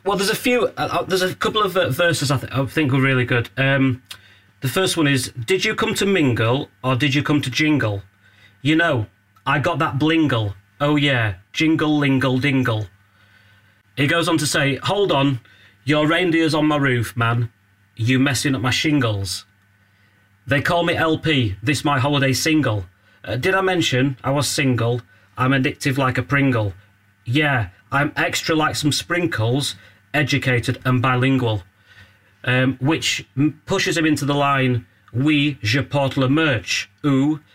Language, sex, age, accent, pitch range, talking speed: English, male, 30-49, British, 110-150 Hz, 170 wpm